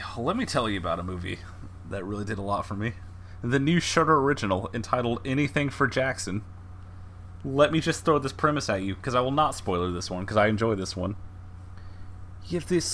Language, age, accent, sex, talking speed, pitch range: English, 30-49, American, male, 210 wpm, 90-130 Hz